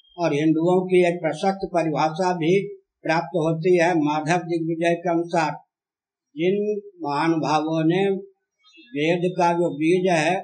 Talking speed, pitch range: 125 wpm, 160-185 Hz